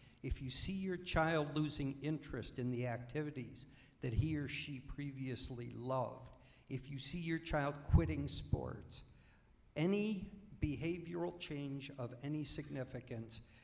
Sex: male